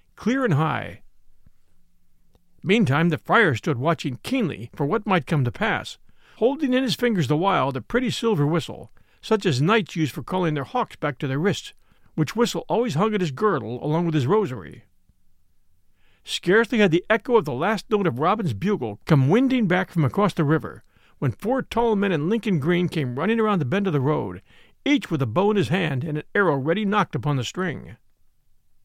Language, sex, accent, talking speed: English, male, American, 200 wpm